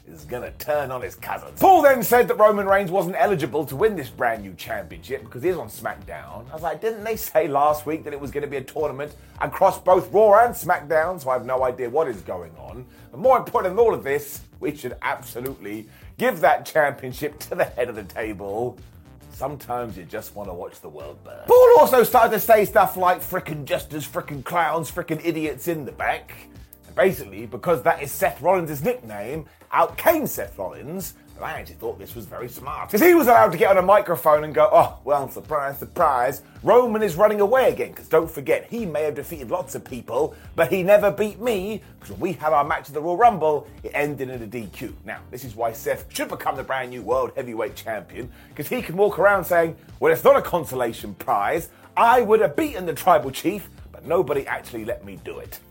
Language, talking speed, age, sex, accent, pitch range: English, 225 wpm, 30-49, male, British, 140-215 Hz